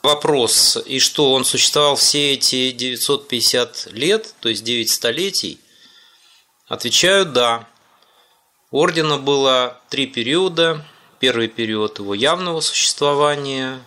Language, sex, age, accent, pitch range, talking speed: Russian, male, 20-39, native, 110-150 Hz, 105 wpm